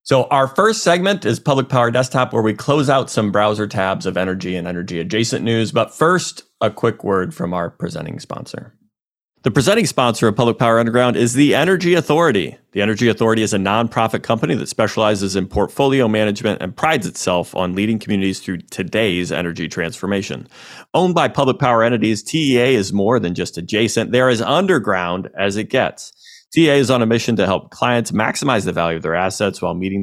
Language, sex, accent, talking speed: English, male, American, 190 wpm